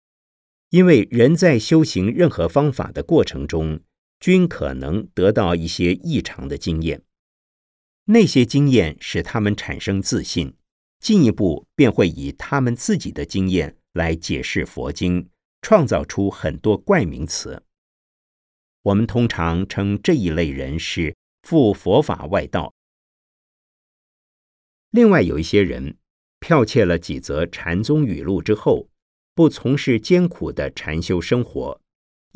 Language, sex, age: Chinese, male, 50-69